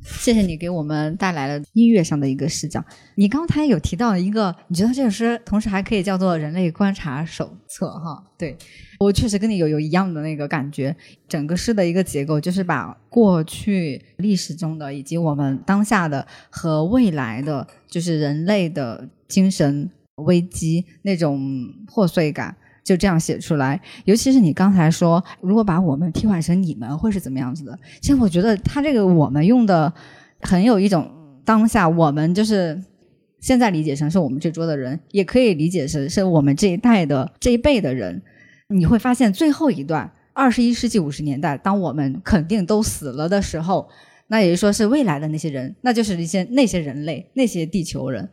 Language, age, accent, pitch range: Chinese, 20-39, native, 150-210 Hz